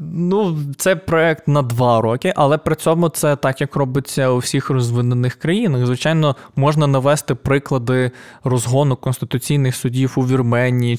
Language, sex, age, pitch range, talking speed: Ukrainian, male, 20-39, 125-155 Hz, 140 wpm